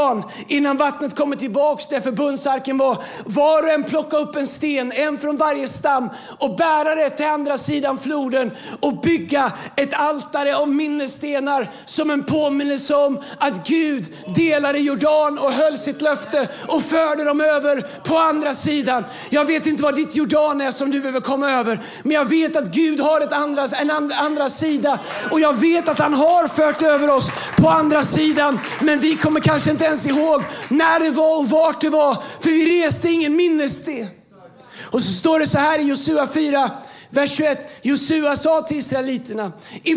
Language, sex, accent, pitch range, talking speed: Swedish, male, native, 270-305 Hz, 180 wpm